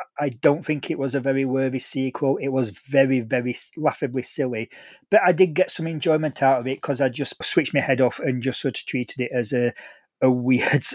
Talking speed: 225 wpm